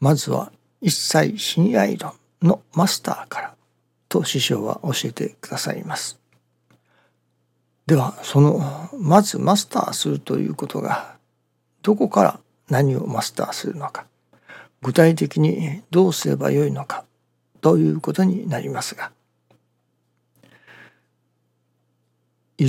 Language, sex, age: Japanese, male, 60-79